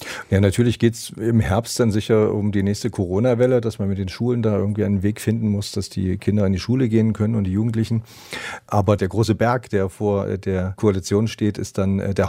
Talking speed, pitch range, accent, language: 225 wpm, 100-115 Hz, German, German